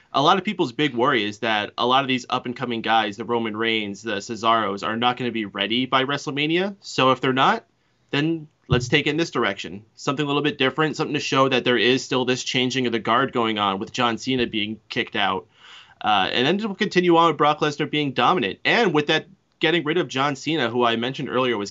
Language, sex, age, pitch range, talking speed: English, male, 30-49, 110-145 Hz, 240 wpm